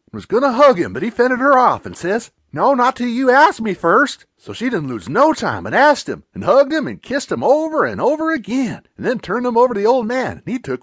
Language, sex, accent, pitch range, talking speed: English, male, American, 230-295 Hz, 275 wpm